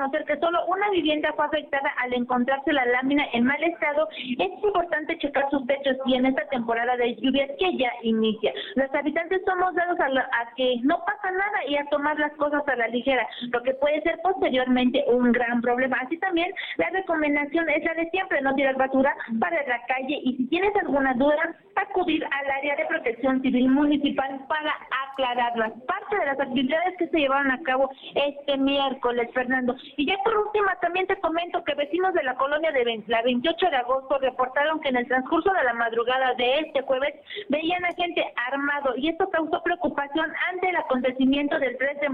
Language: Spanish